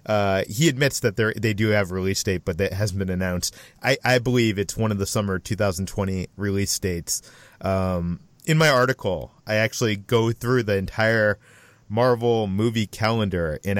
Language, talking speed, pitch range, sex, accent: English, 180 wpm, 100-125 Hz, male, American